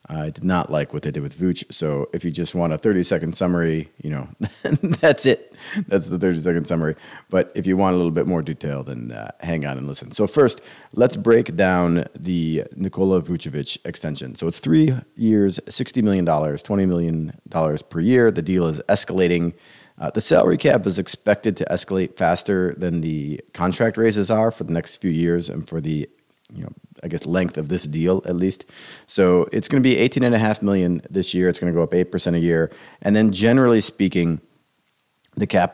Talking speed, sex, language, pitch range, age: 200 wpm, male, English, 80-105 Hz, 30-49